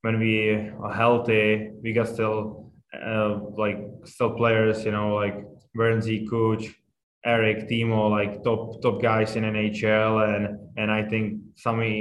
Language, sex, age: English, male, 20-39